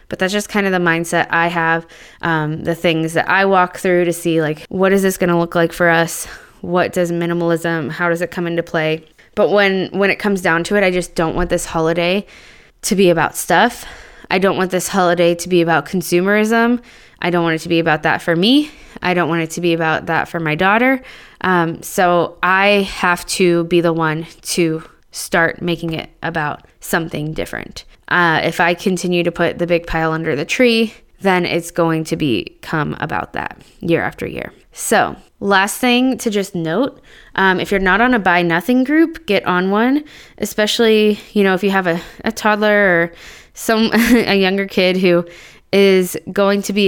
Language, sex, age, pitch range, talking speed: English, female, 20-39, 170-205 Hz, 205 wpm